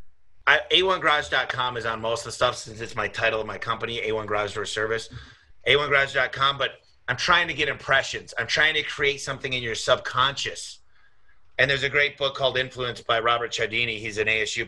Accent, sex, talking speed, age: American, male, 190 wpm, 30-49